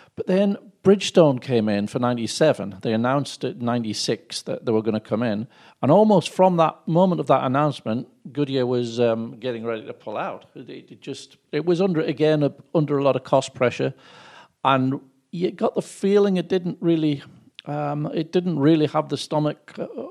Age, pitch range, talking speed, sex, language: 50-69, 120-155 Hz, 185 wpm, male, English